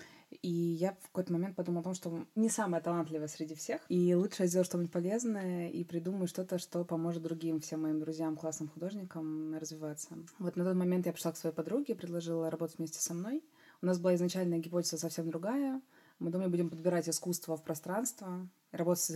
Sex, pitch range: female, 160-180 Hz